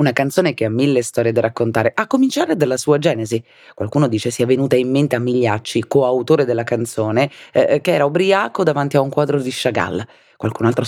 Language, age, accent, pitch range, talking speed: Italian, 30-49, native, 115-150 Hz, 200 wpm